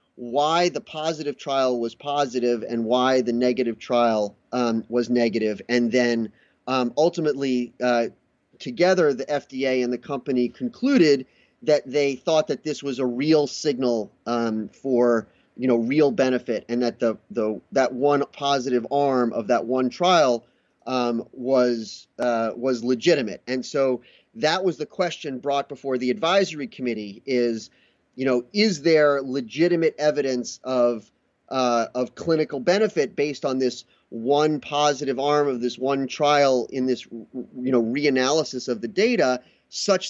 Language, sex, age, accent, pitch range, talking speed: English, male, 30-49, American, 120-145 Hz, 150 wpm